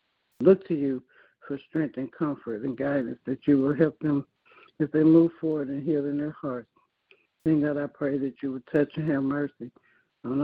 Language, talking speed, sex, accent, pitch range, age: English, 200 wpm, male, American, 130-145 Hz, 60-79